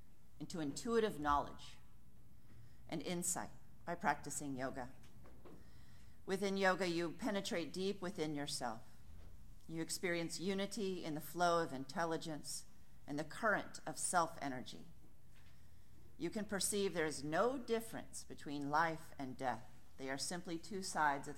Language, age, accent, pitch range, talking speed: English, 40-59, American, 130-175 Hz, 125 wpm